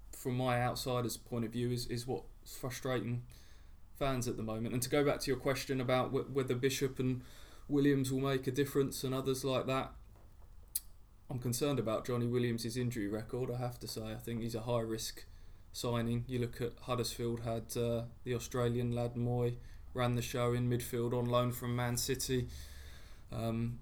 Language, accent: English, British